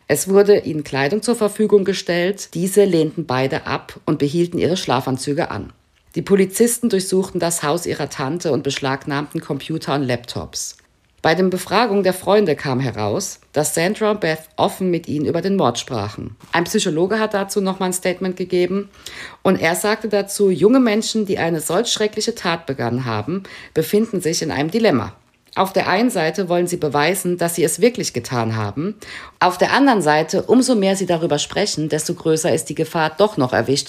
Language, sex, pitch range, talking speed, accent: German, female, 140-190 Hz, 180 wpm, German